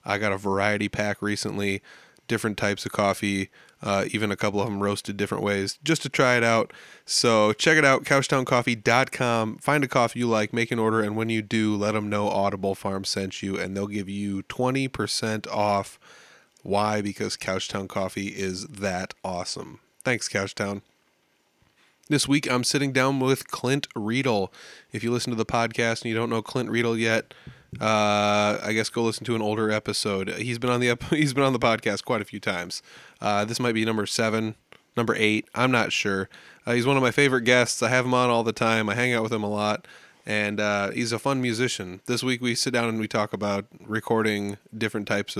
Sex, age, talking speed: male, 20-39, 205 wpm